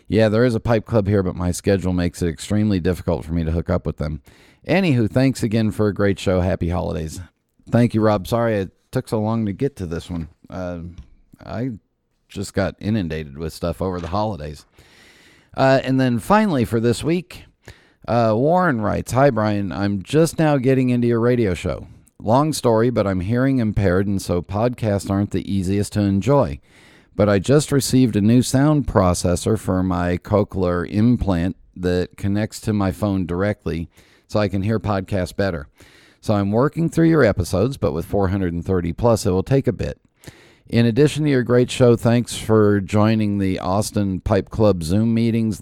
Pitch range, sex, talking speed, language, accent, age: 90-115 Hz, male, 185 wpm, English, American, 50-69